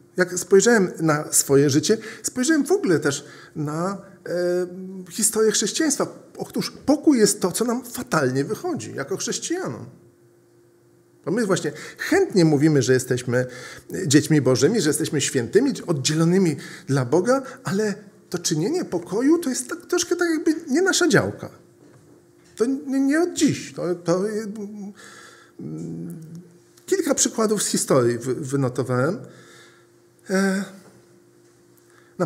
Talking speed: 110 wpm